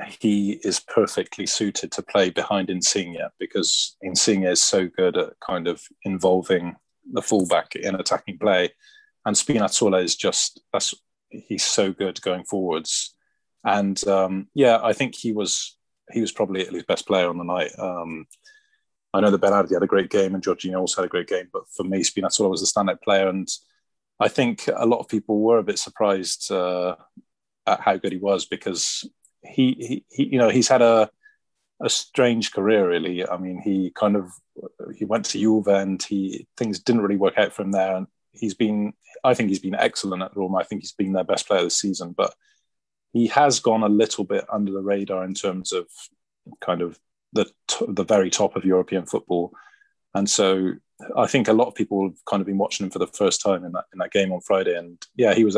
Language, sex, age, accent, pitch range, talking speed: English, male, 20-39, British, 95-110 Hz, 205 wpm